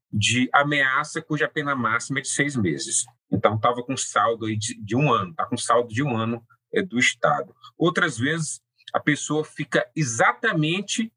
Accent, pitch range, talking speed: Brazilian, 130-175 Hz, 175 wpm